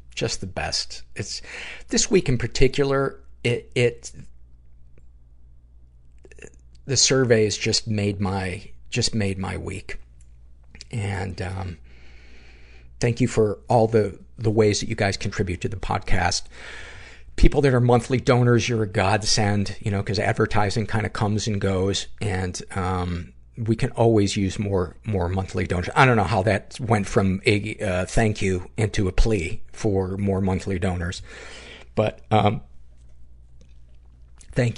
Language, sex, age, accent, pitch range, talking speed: English, male, 50-69, American, 85-110 Hz, 145 wpm